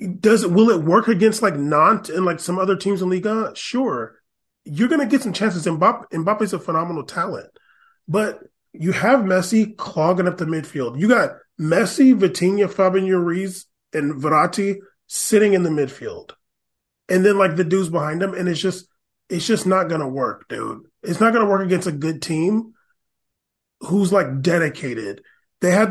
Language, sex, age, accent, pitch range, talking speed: English, male, 30-49, American, 175-220 Hz, 175 wpm